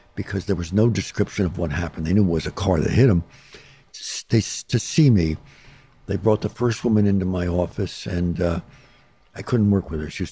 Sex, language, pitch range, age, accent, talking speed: male, English, 90-115 Hz, 60-79, American, 220 wpm